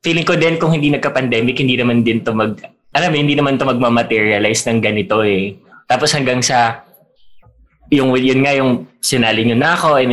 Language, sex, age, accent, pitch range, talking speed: Filipino, male, 20-39, native, 115-140 Hz, 195 wpm